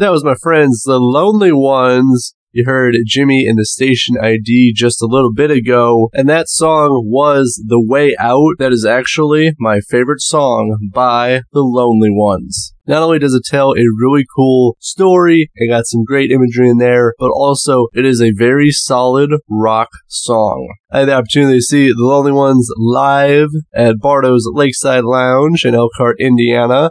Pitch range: 120-150 Hz